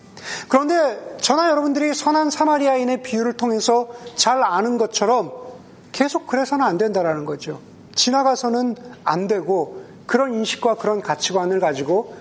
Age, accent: 40-59, native